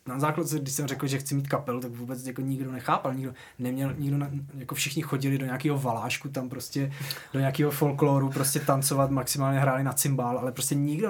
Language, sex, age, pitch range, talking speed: Czech, male, 20-39, 125-150 Hz, 200 wpm